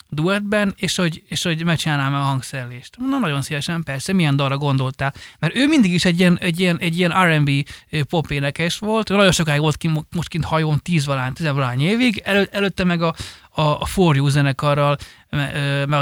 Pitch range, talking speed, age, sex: 145-195 Hz, 170 wpm, 30-49, male